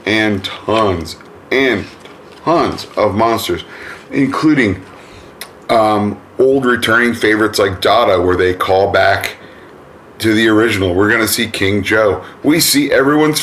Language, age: English, 40-59